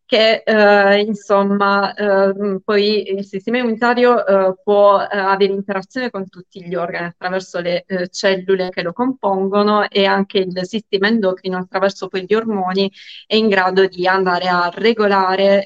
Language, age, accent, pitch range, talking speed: Italian, 30-49, native, 185-205 Hz, 150 wpm